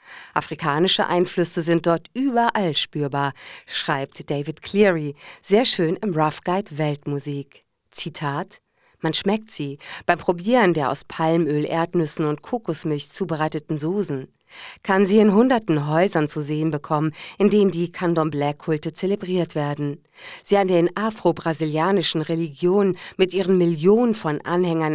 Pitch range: 155-195 Hz